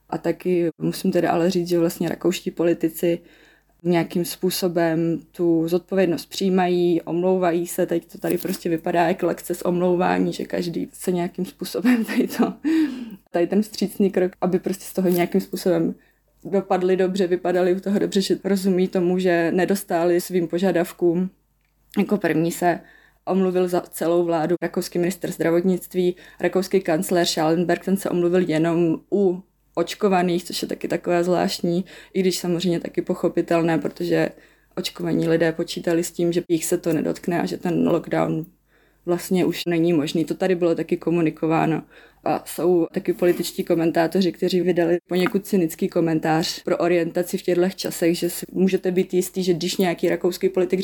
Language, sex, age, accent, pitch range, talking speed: Czech, female, 20-39, native, 170-185 Hz, 155 wpm